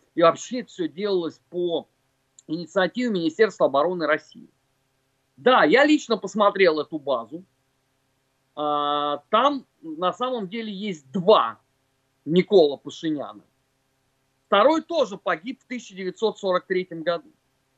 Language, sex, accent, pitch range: Russian, male, native, 150-245 Hz